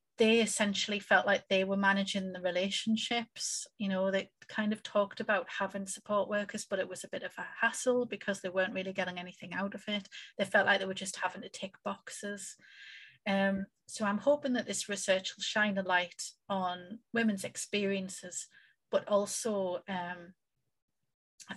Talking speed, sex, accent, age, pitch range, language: 180 wpm, female, British, 30-49, 185-210 Hz, English